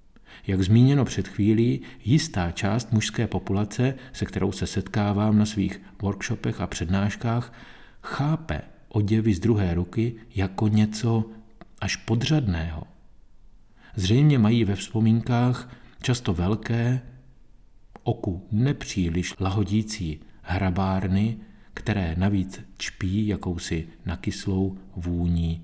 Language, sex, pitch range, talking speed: Czech, male, 95-115 Hz, 100 wpm